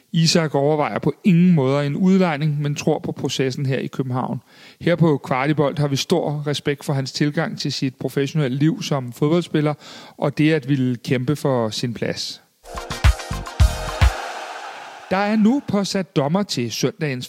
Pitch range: 140-180 Hz